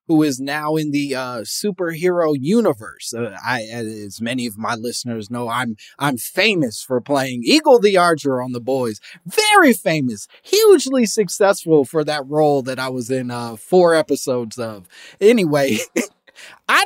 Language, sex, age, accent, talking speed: English, male, 30-49, American, 155 wpm